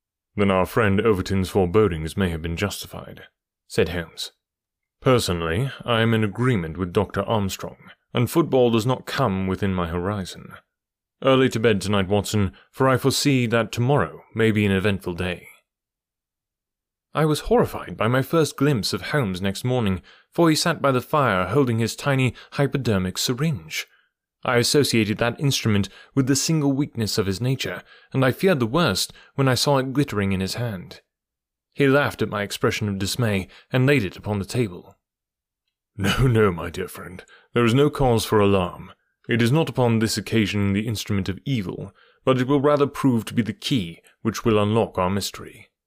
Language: English